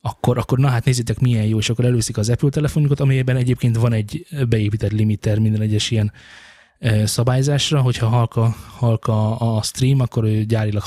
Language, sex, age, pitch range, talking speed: Hungarian, male, 20-39, 110-130 Hz, 170 wpm